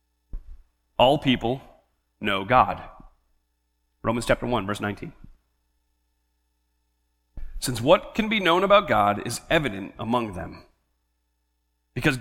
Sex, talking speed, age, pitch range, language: male, 105 wpm, 30-49, 120-205 Hz, English